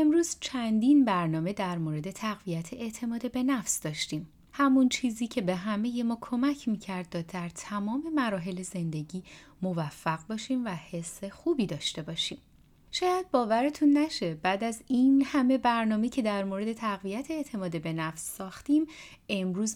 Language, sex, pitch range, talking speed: Persian, female, 180-255 Hz, 145 wpm